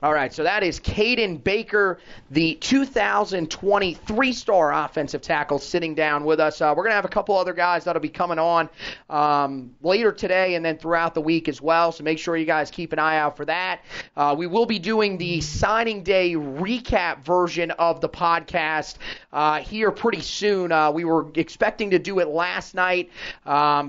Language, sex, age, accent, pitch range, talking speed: English, male, 30-49, American, 155-180 Hz, 190 wpm